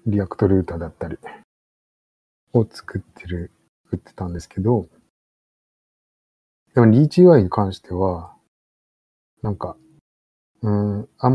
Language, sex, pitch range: Japanese, male, 90-120 Hz